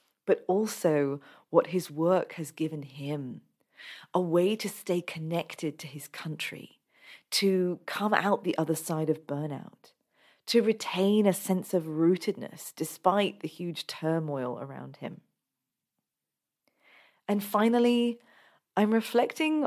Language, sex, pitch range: English, female, 160-205 Hz